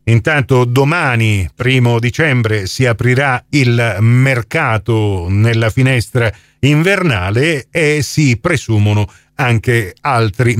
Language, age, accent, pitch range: Italian, 50-69, native, 115-160 Hz